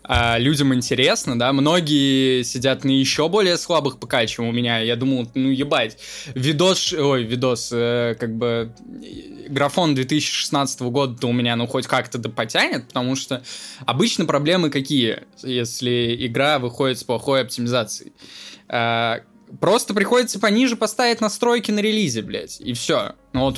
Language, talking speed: Russian, 145 wpm